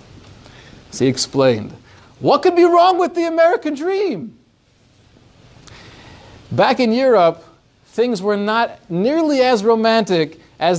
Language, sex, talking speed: English, male, 110 wpm